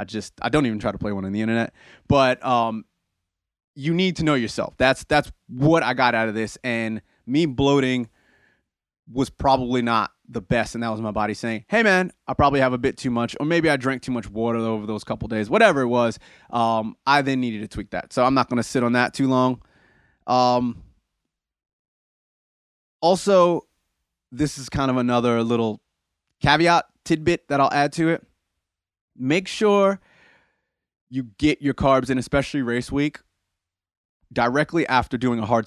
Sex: male